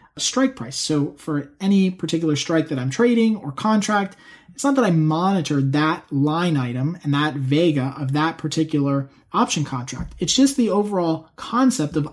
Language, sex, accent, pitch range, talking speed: English, male, American, 145-205 Hz, 170 wpm